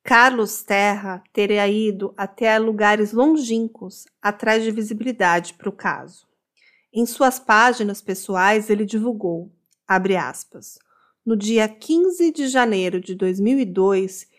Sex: female